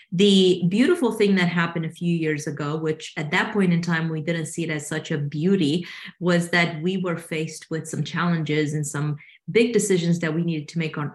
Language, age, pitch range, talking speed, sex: English, 30-49, 155-175 Hz, 220 wpm, female